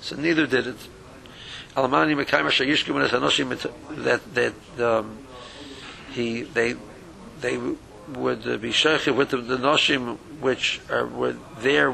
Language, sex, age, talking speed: English, male, 60-79, 140 wpm